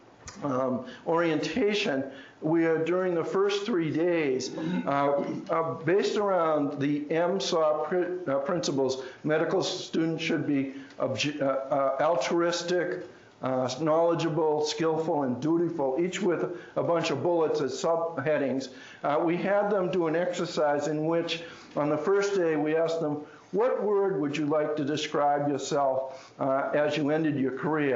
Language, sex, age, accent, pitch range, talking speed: English, male, 60-79, American, 140-165 Hz, 150 wpm